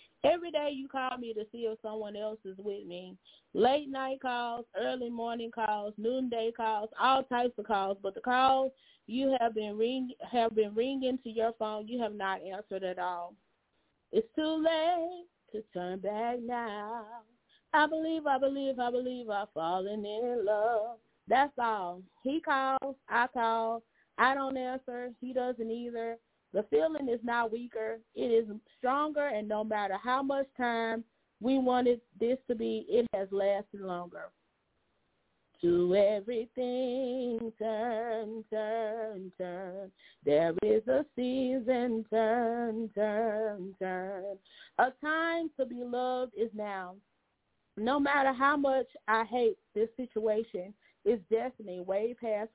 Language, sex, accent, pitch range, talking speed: English, female, American, 210-255 Hz, 145 wpm